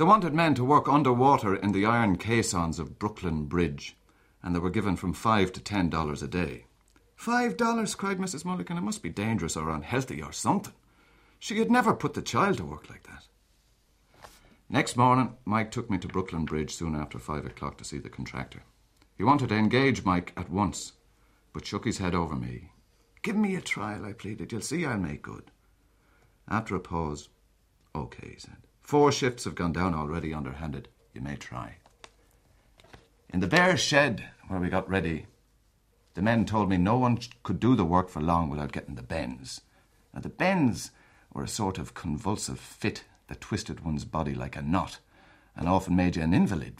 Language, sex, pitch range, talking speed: English, male, 80-115 Hz, 190 wpm